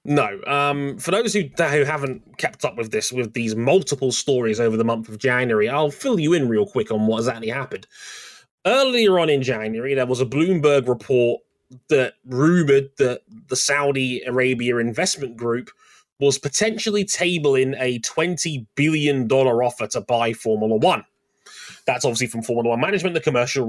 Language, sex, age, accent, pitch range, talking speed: English, male, 20-39, British, 125-165 Hz, 170 wpm